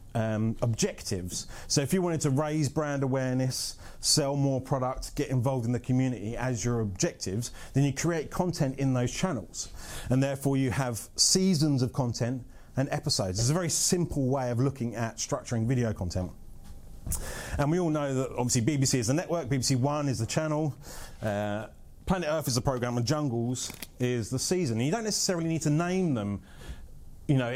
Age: 30-49